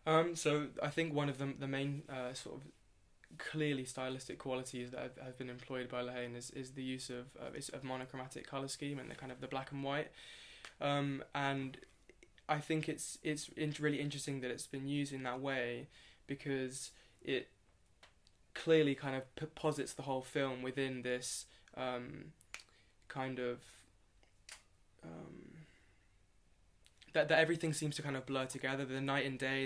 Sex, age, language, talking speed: male, 20-39, English, 170 wpm